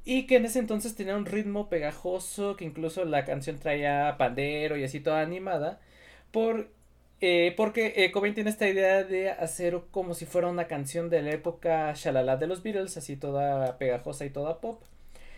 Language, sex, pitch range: Spanish, male, 145-190 Hz